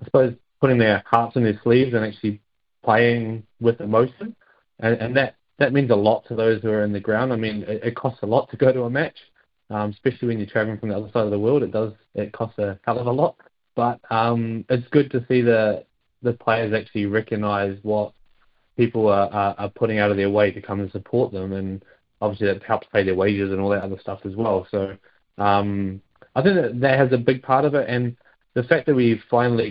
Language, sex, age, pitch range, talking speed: English, male, 20-39, 105-120 Hz, 240 wpm